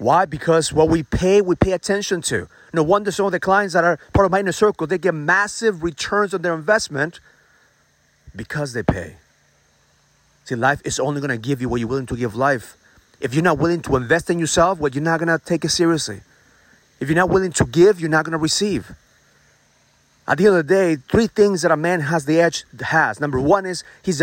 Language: English